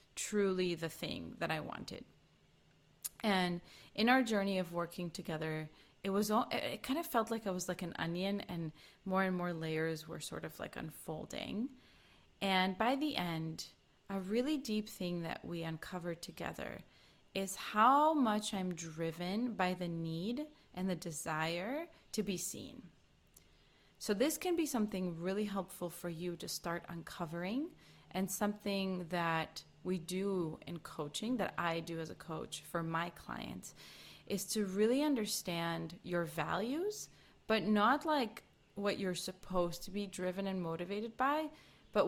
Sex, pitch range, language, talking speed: female, 170-210 Hz, English, 155 wpm